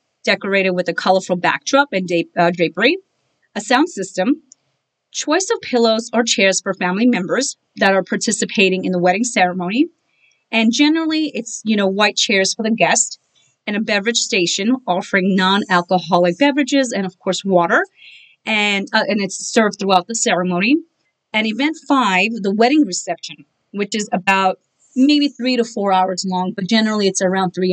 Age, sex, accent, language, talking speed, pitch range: 30-49, female, American, English, 160 wpm, 185-235 Hz